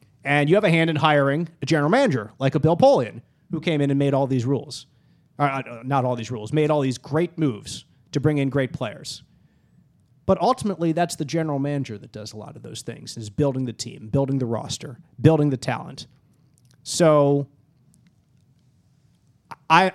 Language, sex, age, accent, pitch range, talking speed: English, male, 30-49, American, 130-160 Hz, 185 wpm